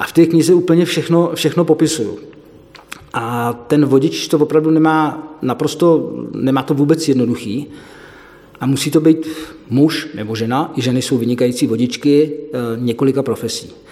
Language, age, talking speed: Czech, 40-59, 140 wpm